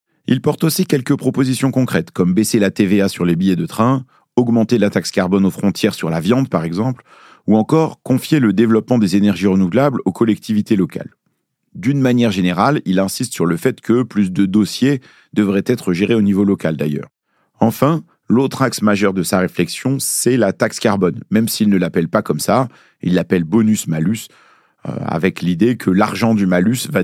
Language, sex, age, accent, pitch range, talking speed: French, male, 40-59, French, 95-130 Hz, 185 wpm